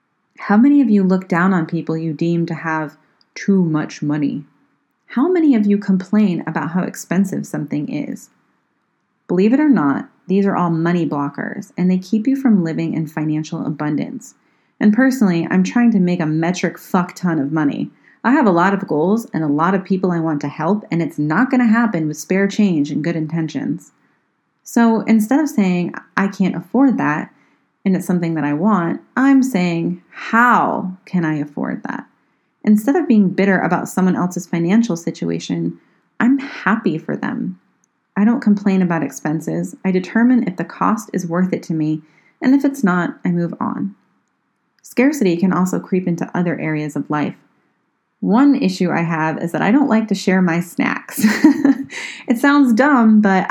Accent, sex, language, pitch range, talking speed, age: American, female, English, 165-225 Hz, 185 wpm, 30-49